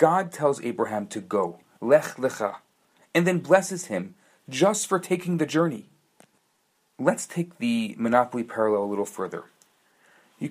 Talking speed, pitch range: 145 wpm, 125-180 Hz